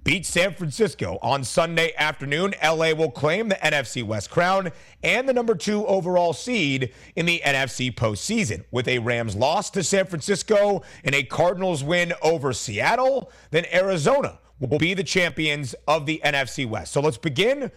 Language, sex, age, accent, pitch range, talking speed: English, male, 30-49, American, 130-175 Hz, 165 wpm